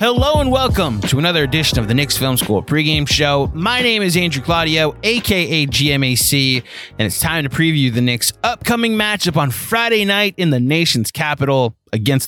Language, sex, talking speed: English, male, 180 wpm